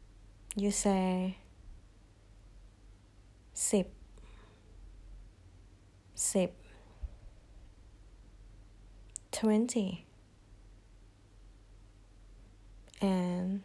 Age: 20-39